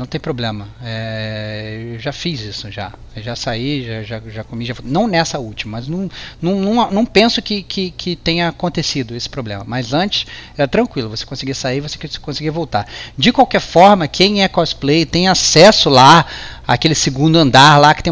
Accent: Brazilian